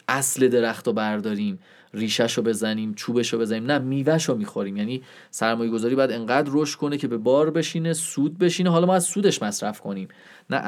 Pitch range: 110-145 Hz